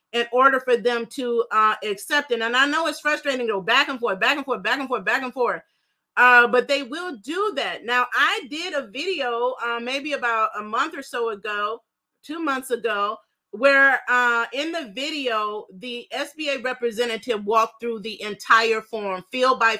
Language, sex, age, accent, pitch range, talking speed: English, female, 30-49, American, 235-290 Hz, 195 wpm